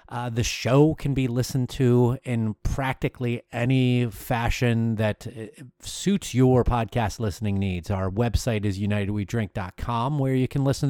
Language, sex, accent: English, male, American